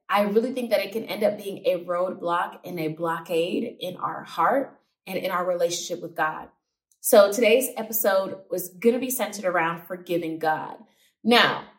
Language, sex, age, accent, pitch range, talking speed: English, female, 20-39, American, 170-225 Hz, 180 wpm